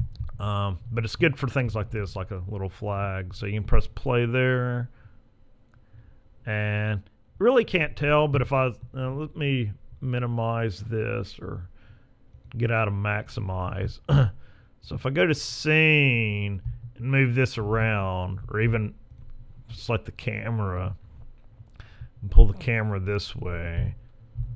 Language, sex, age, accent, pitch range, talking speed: English, male, 40-59, American, 105-130 Hz, 135 wpm